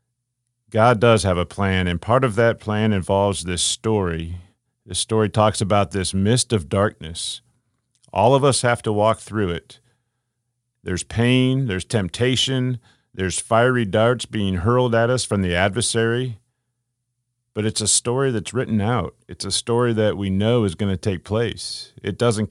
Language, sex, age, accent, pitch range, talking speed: English, male, 40-59, American, 95-120 Hz, 170 wpm